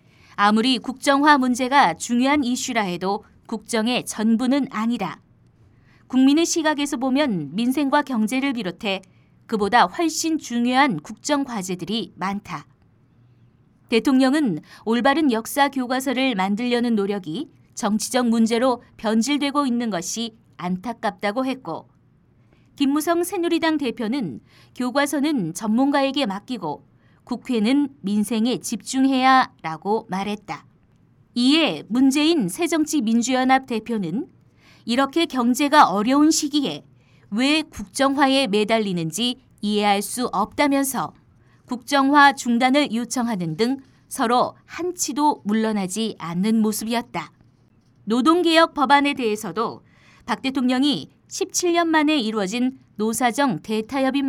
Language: Korean